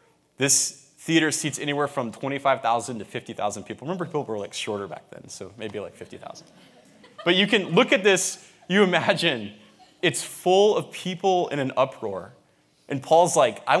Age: 20-39